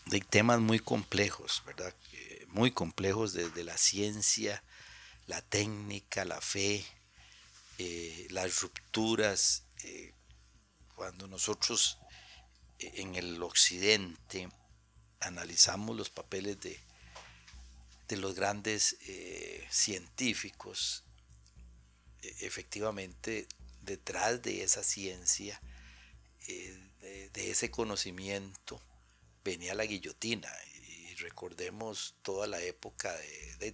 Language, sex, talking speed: Spanish, male, 95 wpm